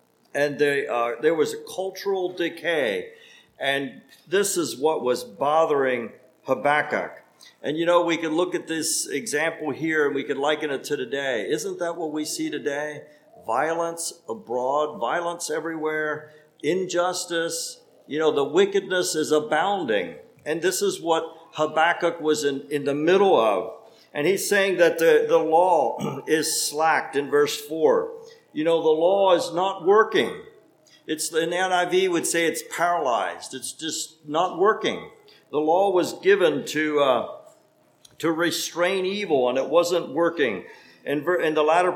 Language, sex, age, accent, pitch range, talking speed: English, male, 50-69, American, 155-205 Hz, 155 wpm